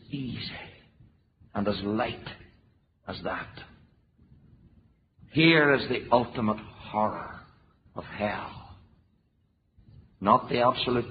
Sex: male